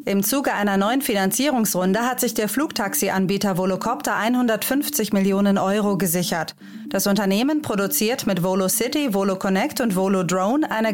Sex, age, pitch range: female, 30-49, 195-240 Hz